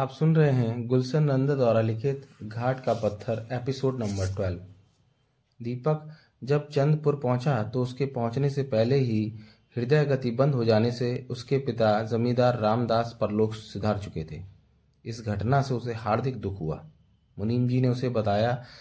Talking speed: 160 wpm